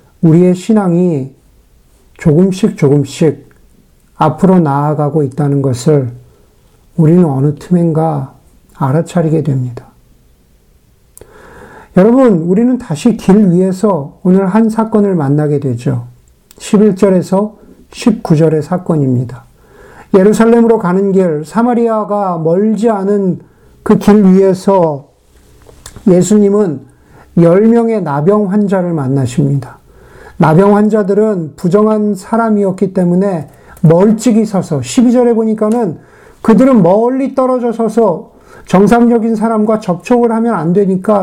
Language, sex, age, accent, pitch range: Korean, male, 50-69, native, 160-220 Hz